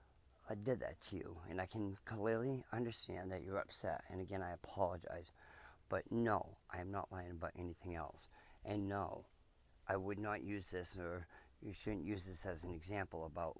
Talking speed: 180 wpm